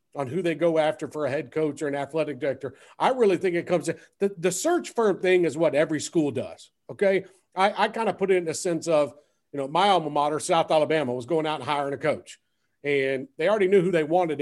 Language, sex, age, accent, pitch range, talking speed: English, male, 50-69, American, 135-175 Hz, 255 wpm